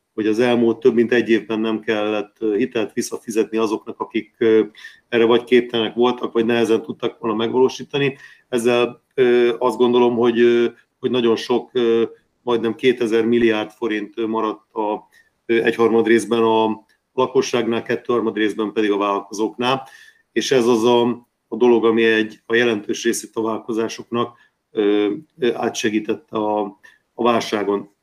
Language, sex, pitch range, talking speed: Hungarian, male, 110-125 Hz, 135 wpm